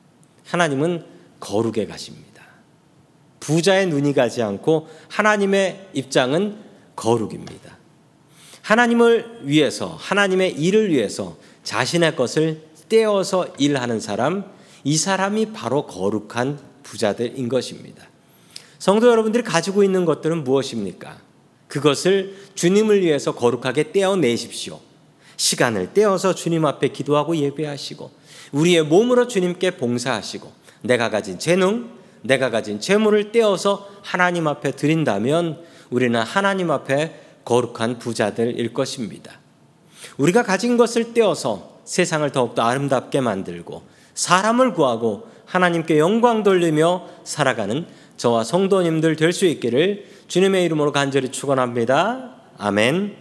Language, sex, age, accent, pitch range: Korean, male, 40-59, native, 135-190 Hz